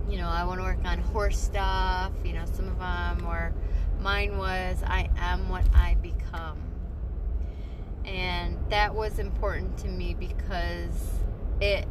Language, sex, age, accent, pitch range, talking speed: English, female, 20-39, American, 80-90 Hz, 150 wpm